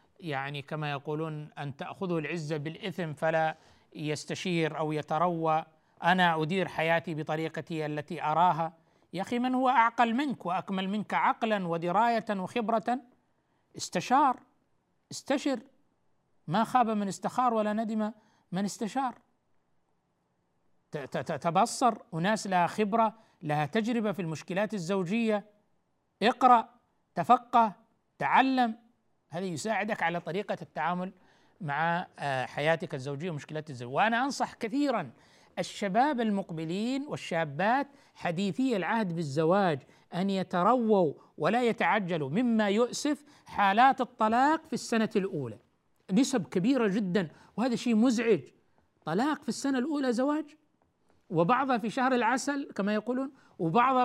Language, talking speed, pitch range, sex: Arabic, 110 wpm, 165-240 Hz, male